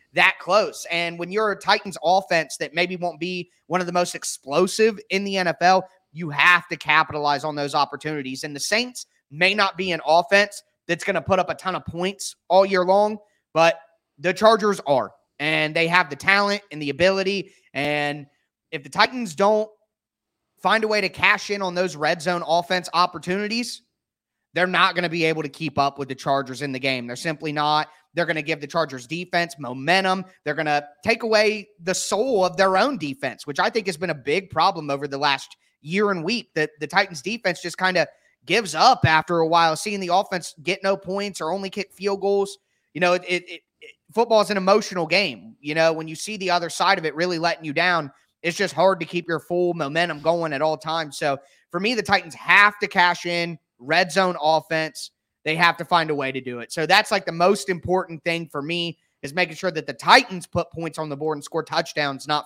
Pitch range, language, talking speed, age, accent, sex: 155-190 Hz, English, 220 wpm, 30-49, American, male